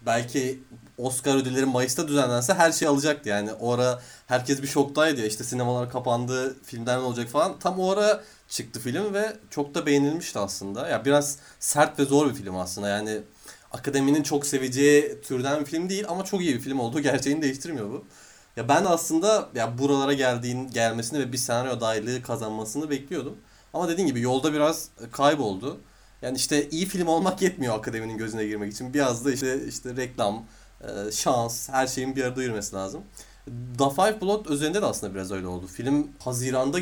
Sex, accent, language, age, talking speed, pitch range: male, native, Turkish, 30-49, 180 wpm, 115-145 Hz